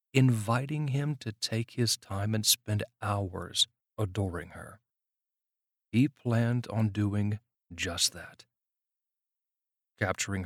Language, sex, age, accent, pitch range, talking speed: English, male, 40-59, American, 100-120 Hz, 105 wpm